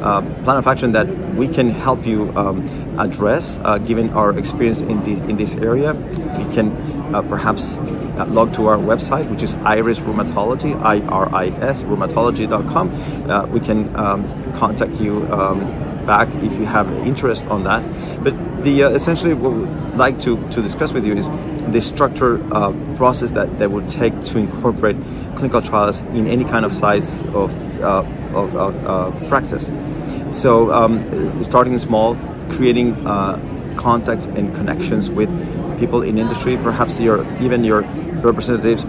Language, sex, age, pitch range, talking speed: English, male, 30-49, 110-140 Hz, 160 wpm